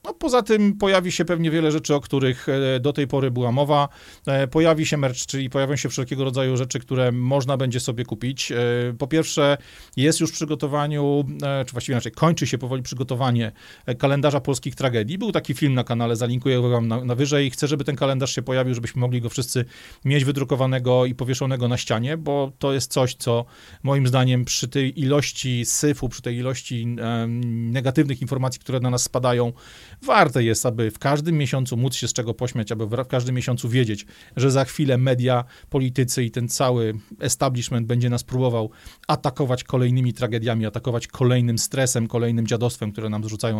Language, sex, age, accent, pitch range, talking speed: Polish, male, 40-59, native, 120-145 Hz, 175 wpm